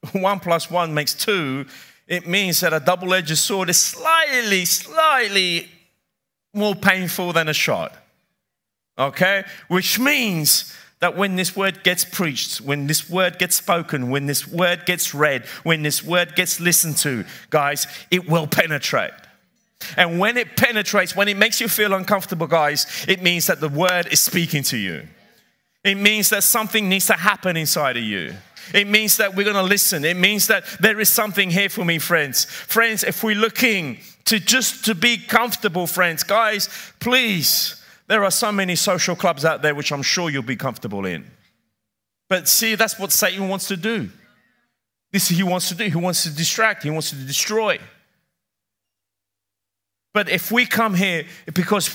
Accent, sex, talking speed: British, male, 175 wpm